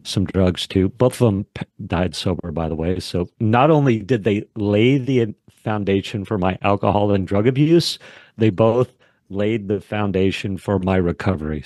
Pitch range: 85-110 Hz